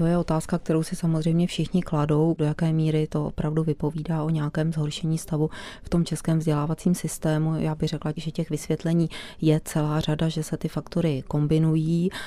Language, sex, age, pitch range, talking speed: Czech, female, 30-49, 150-165 Hz, 180 wpm